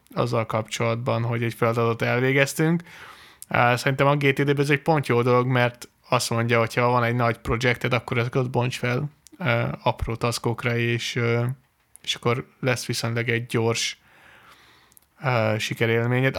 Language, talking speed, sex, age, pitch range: Hungarian, 140 wpm, male, 20-39, 115-140 Hz